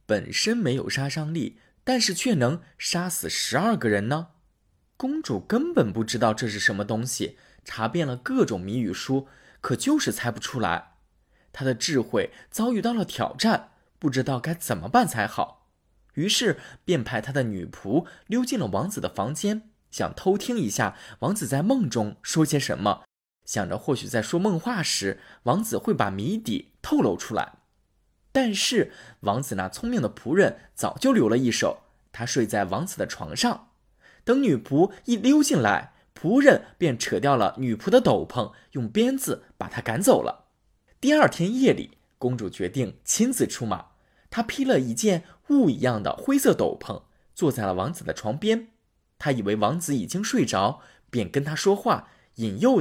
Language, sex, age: Chinese, male, 20-39